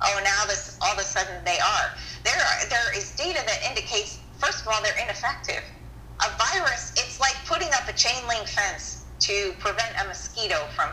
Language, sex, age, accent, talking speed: English, female, 30-49, American, 200 wpm